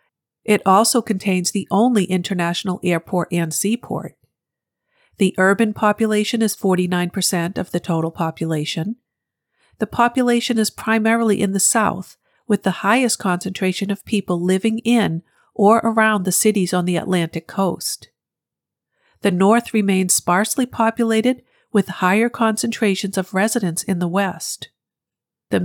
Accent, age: American, 50-69